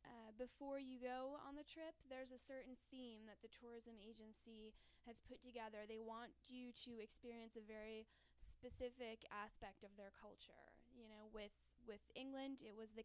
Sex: female